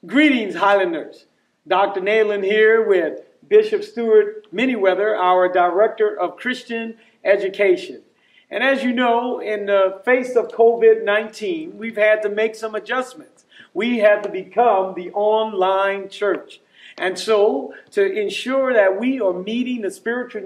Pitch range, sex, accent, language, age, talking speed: 200-250 Hz, male, American, English, 40-59, 135 wpm